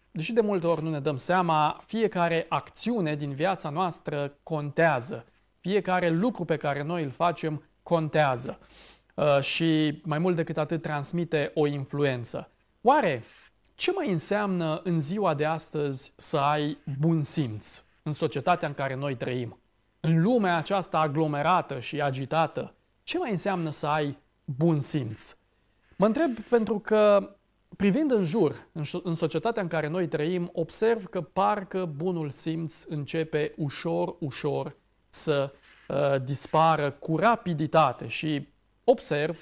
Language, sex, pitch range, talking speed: Romanian, male, 145-185 Hz, 135 wpm